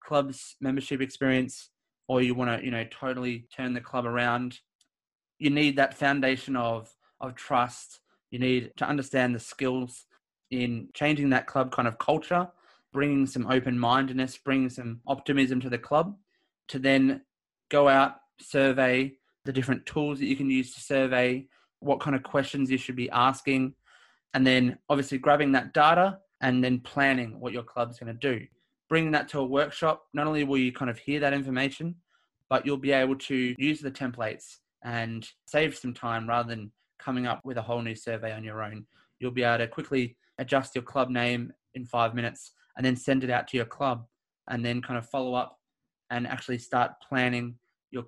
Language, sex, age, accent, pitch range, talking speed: English, male, 20-39, Australian, 120-135 Hz, 185 wpm